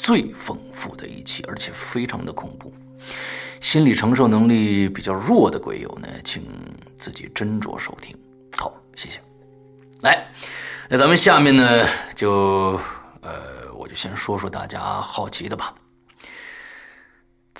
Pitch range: 100-140 Hz